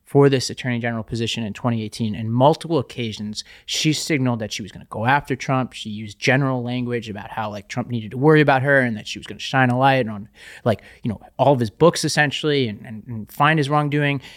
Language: English